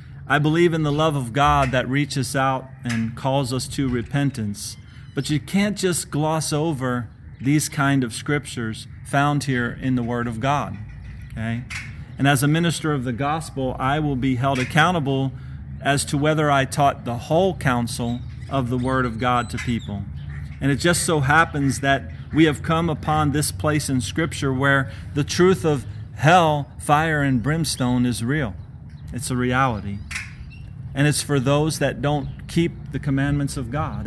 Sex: male